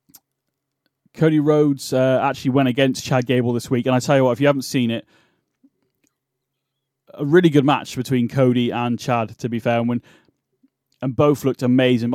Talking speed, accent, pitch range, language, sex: 185 wpm, British, 120-135 Hz, English, male